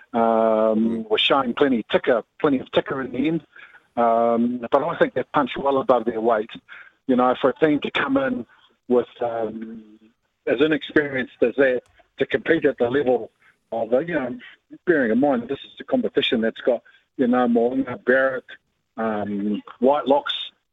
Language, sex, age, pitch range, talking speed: English, male, 50-69, 115-145 Hz, 170 wpm